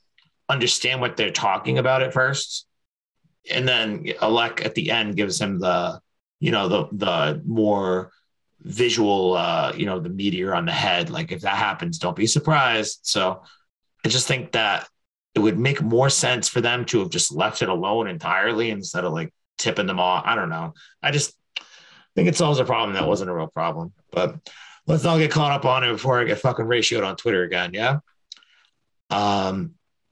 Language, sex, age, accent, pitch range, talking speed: English, male, 30-49, American, 105-135 Hz, 190 wpm